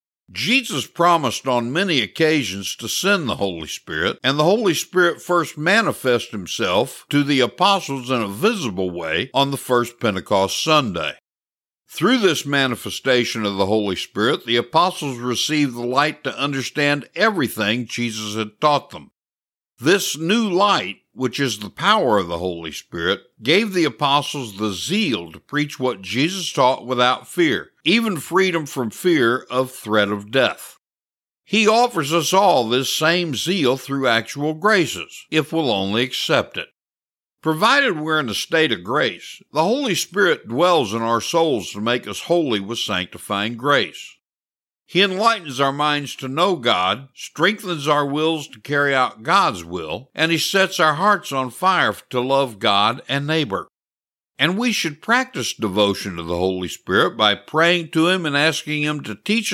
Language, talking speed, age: English, 160 wpm, 60-79